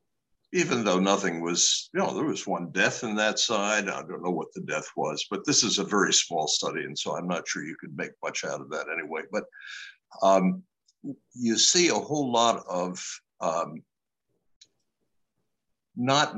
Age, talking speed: 60-79, 185 wpm